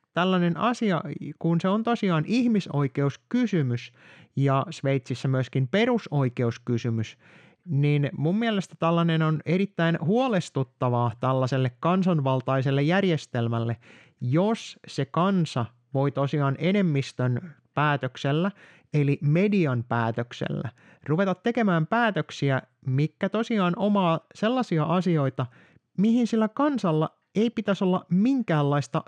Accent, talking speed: native, 95 wpm